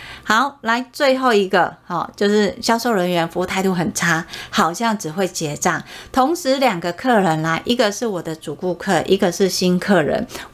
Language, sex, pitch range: Chinese, female, 185-250 Hz